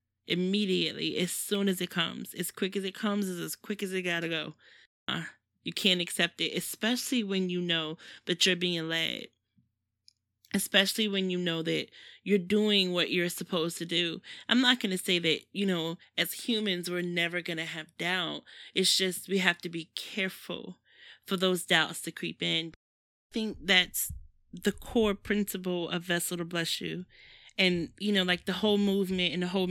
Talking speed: 185 wpm